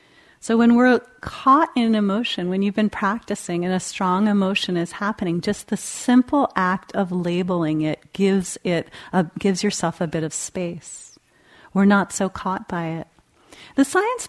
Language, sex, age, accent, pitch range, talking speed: English, female, 40-59, American, 170-210 Hz, 170 wpm